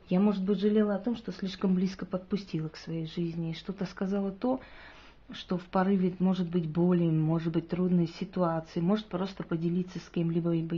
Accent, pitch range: native, 170-210 Hz